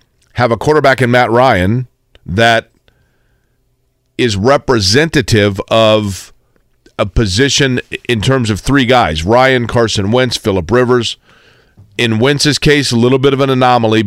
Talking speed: 130 wpm